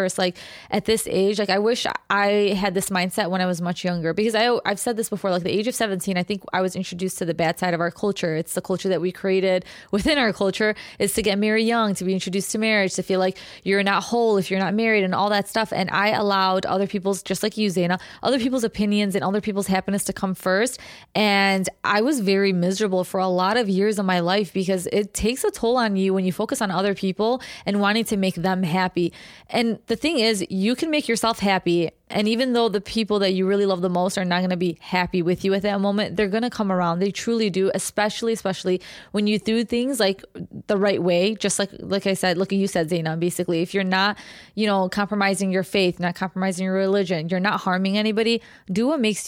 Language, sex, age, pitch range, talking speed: English, female, 20-39, 185-210 Hz, 245 wpm